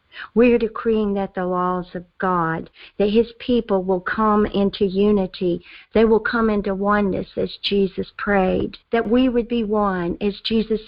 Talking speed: 160 wpm